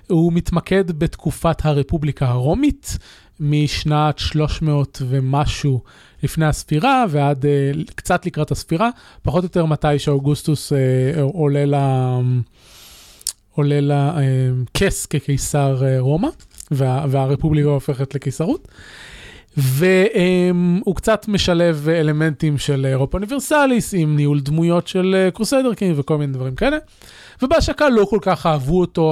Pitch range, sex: 140-185 Hz, male